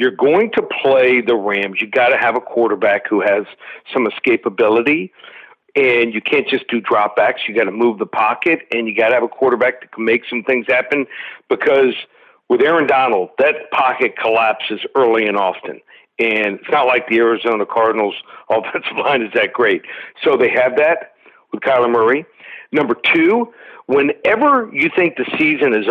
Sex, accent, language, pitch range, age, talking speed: male, American, English, 125-200 Hz, 50-69, 185 wpm